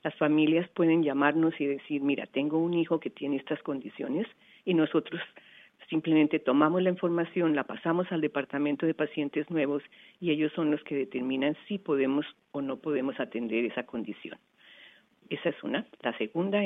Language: English